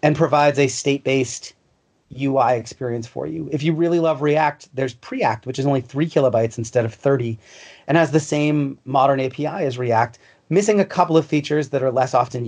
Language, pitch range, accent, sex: English, 125-155 Hz, American, male